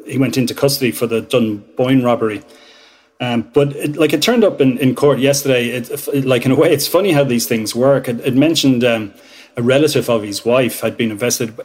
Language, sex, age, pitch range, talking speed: English, male, 30-49, 115-135 Hz, 215 wpm